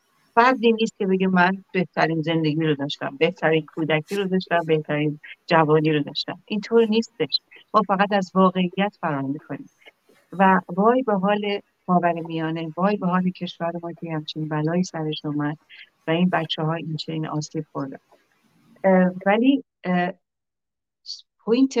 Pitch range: 155-190 Hz